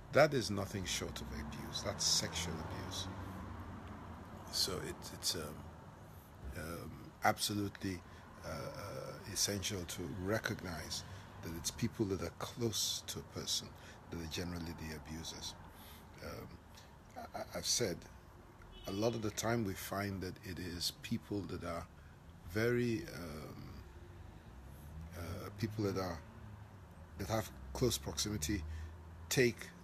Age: 50-69